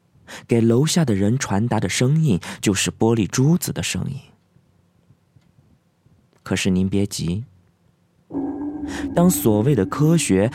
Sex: male